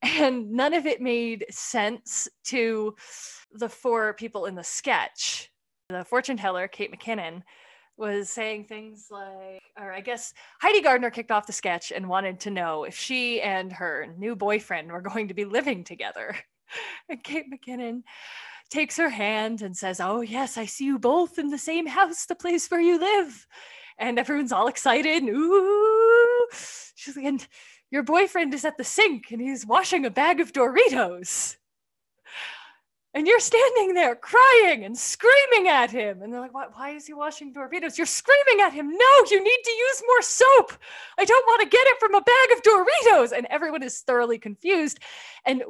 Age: 20-39